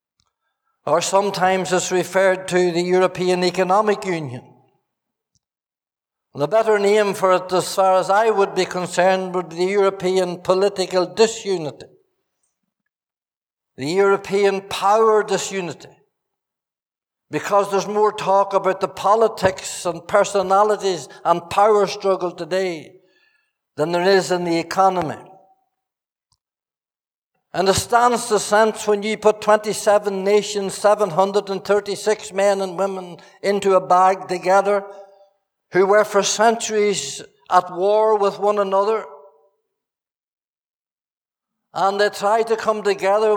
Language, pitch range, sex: English, 185-210 Hz, male